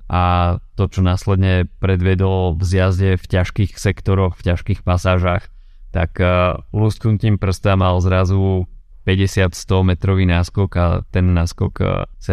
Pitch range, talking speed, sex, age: 90-95 Hz, 125 wpm, male, 20-39